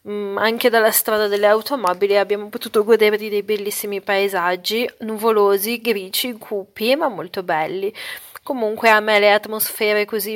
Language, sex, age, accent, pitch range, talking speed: Italian, female, 30-49, native, 195-225 Hz, 140 wpm